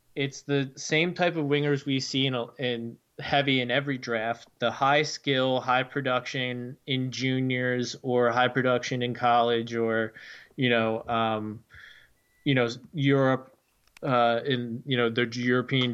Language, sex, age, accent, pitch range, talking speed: English, male, 20-39, American, 120-140 Hz, 150 wpm